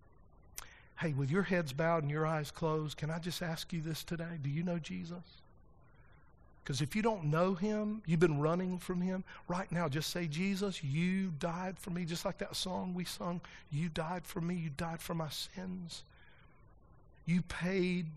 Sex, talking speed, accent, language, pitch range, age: male, 190 wpm, American, English, 150-175 Hz, 50-69